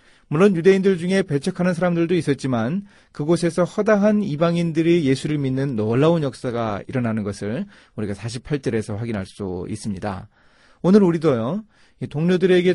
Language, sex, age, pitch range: Korean, male, 30-49, 110-170 Hz